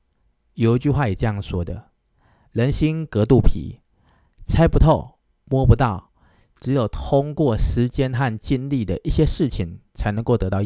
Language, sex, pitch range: Chinese, male, 100-135 Hz